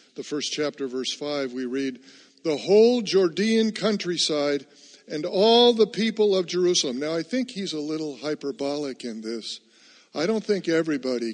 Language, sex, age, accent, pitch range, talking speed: English, male, 50-69, American, 140-185 Hz, 160 wpm